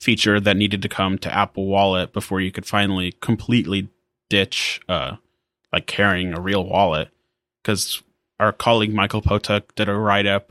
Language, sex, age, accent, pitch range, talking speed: English, male, 20-39, American, 95-110 Hz, 160 wpm